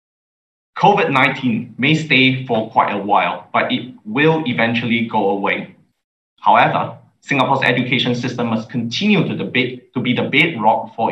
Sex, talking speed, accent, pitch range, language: male, 130 wpm, Malaysian, 110-130 Hz, English